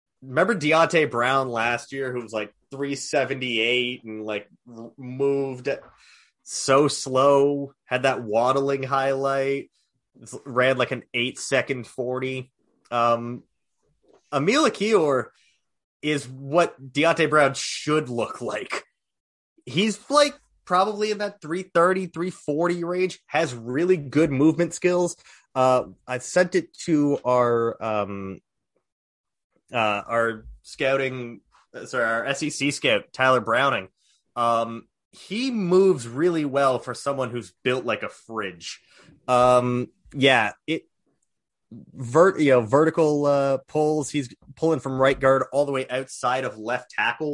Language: English